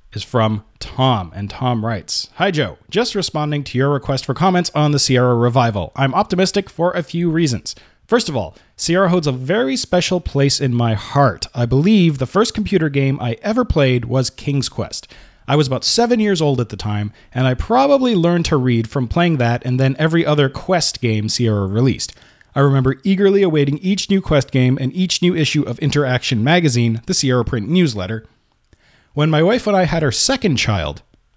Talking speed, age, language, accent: 195 wpm, 30-49, English, American